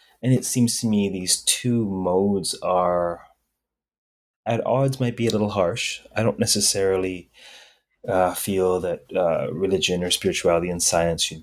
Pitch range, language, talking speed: 90-115 Hz, English, 150 wpm